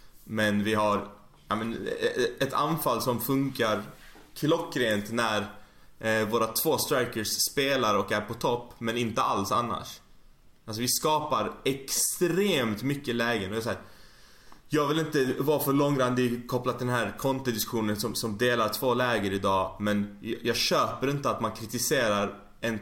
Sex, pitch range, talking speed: male, 115-170 Hz, 155 wpm